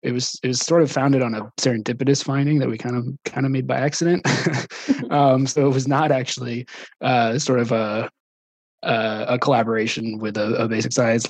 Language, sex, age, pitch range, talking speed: English, male, 20-39, 110-135 Hz, 195 wpm